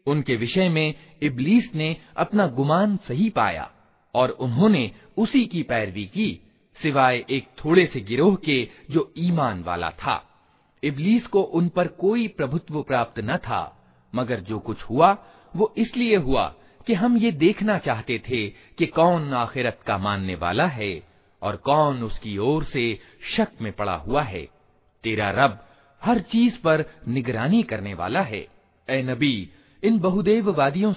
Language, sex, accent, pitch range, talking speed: Hindi, male, native, 115-190 Hz, 145 wpm